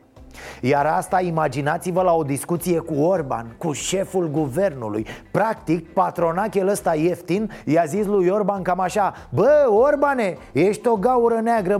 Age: 30-49